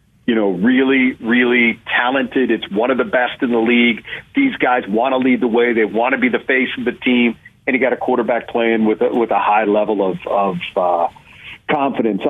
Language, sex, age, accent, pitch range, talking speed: English, male, 50-69, American, 115-140 Hz, 220 wpm